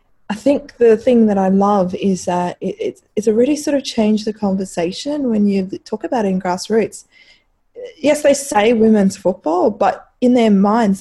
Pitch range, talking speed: 175-215 Hz, 195 wpm